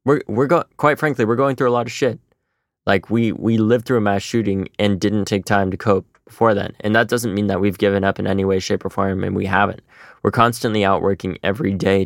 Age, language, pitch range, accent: 20-39, English, 95-110 Hz, American